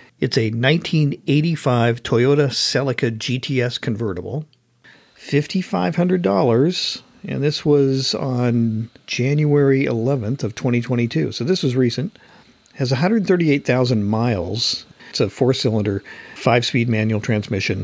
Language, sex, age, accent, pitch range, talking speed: English, male, 50-69, American, 110-140 Hz, 100 wpm